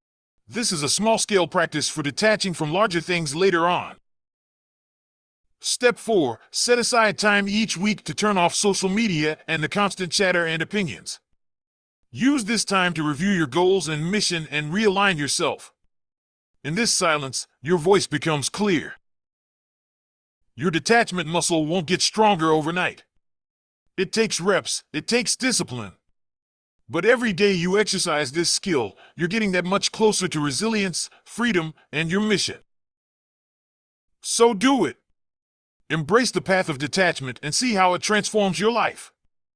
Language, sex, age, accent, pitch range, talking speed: English, male, 40-59, American, 155-210 Hz, 145 wpm